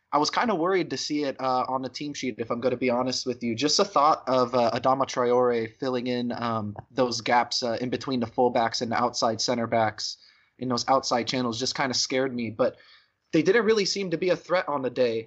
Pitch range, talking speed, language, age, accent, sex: 125-155 Hz, 250 wpm, English, 20-39, American, male